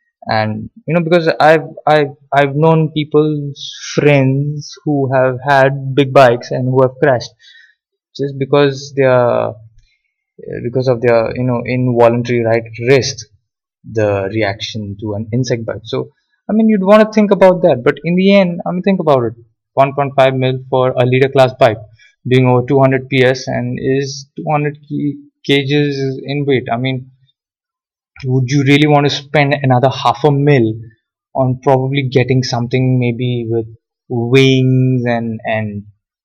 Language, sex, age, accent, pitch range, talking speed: English, male, 20-39, Indian, 120-145 Hz, 155 wpm